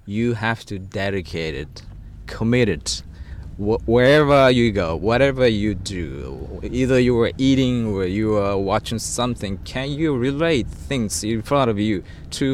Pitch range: 85-120 Hz